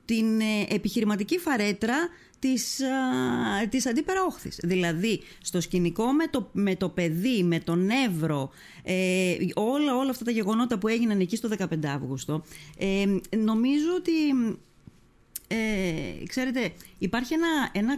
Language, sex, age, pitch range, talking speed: Greek, female, 30-49, 180-255 Hz, 115 wpm